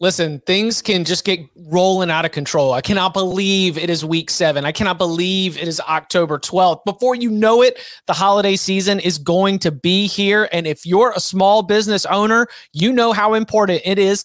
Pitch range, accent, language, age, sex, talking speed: 180-225 Hz, American, English, 30-49, male, 200 wpm